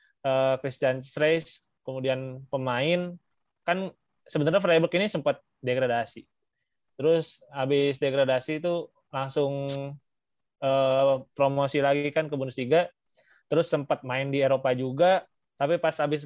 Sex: male